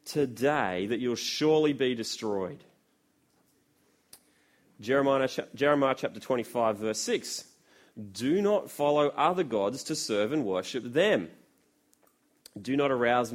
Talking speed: 110 wpm